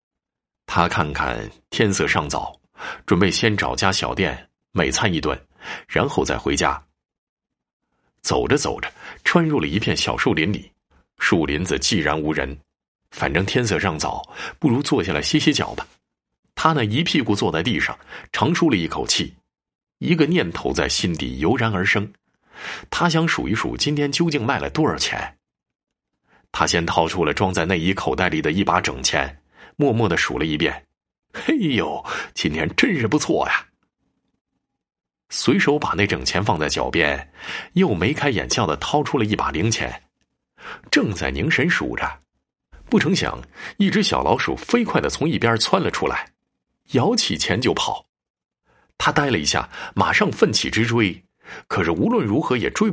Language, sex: Chinese, male